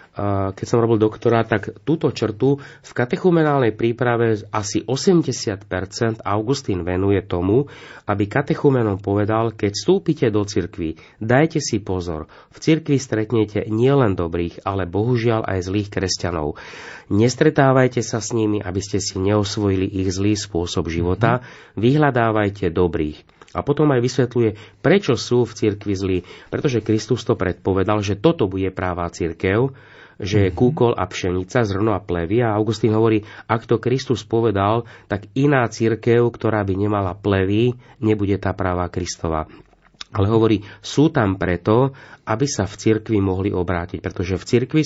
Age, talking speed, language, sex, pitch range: 30-49, 145 wpm, Slovak, male, 95-125 Hz